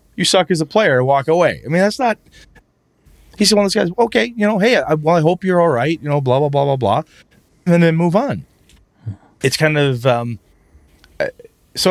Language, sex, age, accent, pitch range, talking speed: English, male, 30-49, American, 100-160 Hz, 215 wpm